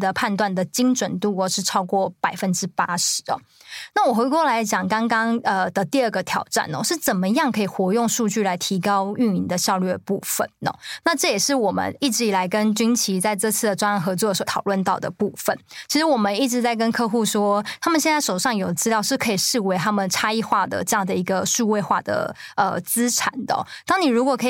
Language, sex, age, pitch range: Chinese, female, 20-39, 195-245 Hz